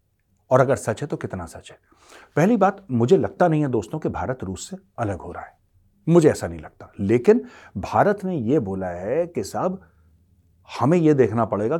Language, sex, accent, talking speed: Hindi, male, native, 200 wpm